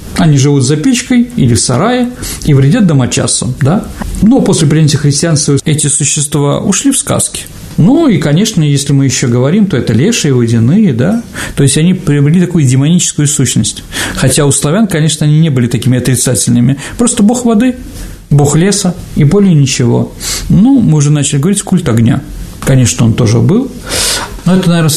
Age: 40-59